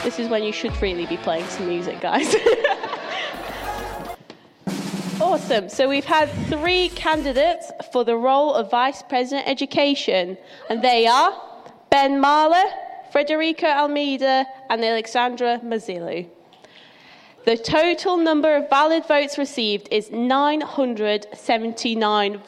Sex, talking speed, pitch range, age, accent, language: female, 115 wpm, 220-295 Hz, 10-29, British, English